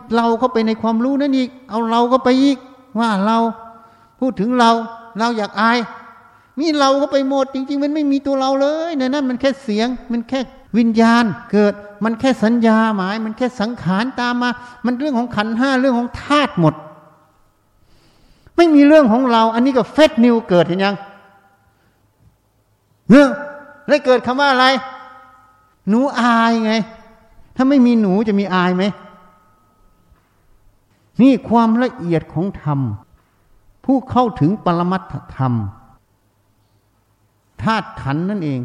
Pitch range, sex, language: 145-245 Hz, male, Thai